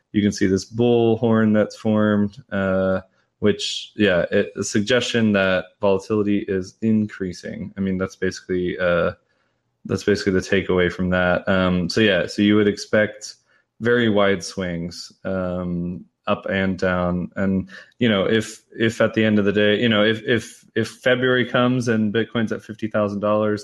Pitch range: 95-110 Hz